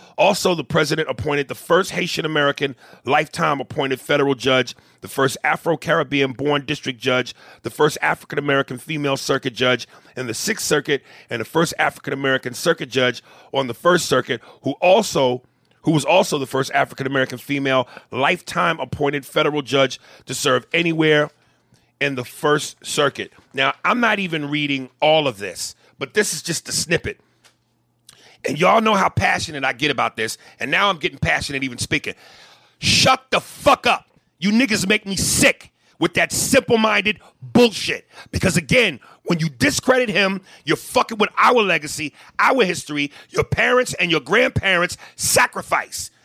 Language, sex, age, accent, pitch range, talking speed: English, male, 40-59, American, 135-200 Hz, 155 wpm